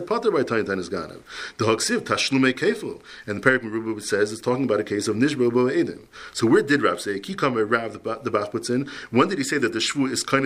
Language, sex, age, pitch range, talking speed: English, male, 40-59, 110-135 Hz, 190 wpm